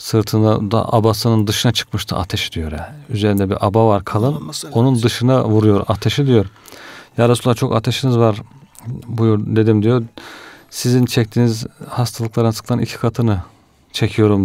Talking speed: 130 wpm